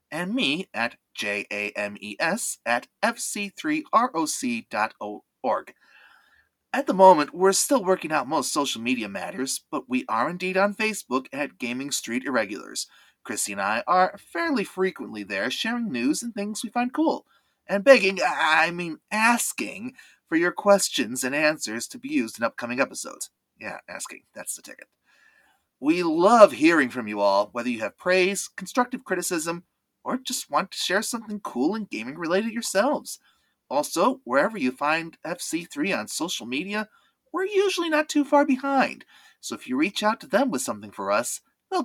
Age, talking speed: 30-49, 160 wpm